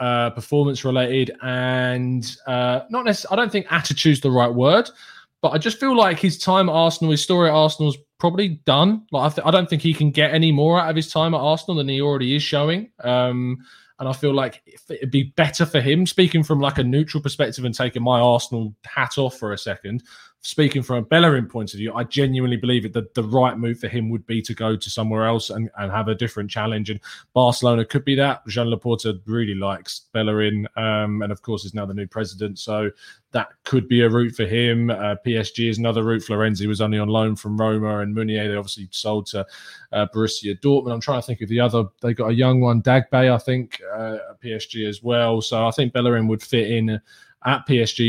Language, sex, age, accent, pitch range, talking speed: English, male, 20-39, British, 110-140 Hz, 230 wpm